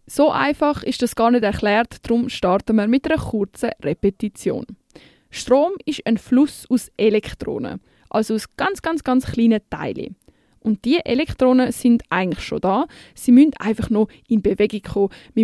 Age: 20-39